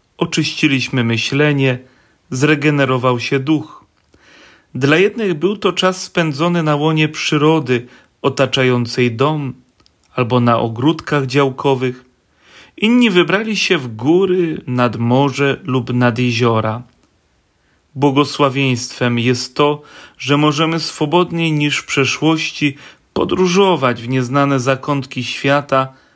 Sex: male